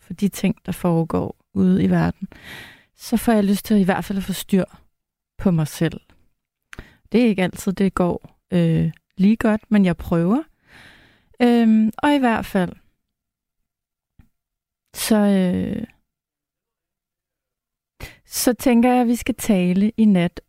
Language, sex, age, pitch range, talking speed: Danish, female, 30-49, 180-230 Hz, 145 wpm